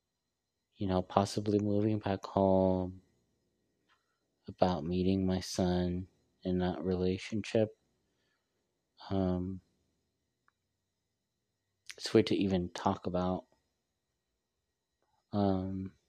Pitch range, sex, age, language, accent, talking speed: 95-110 Hz, male, 30-49, English, American, 80 wpm